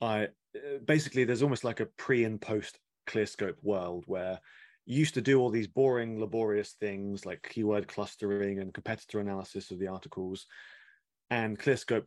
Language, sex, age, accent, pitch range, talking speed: English, male, 20-39, British, 100-125 Hz, 160 wpm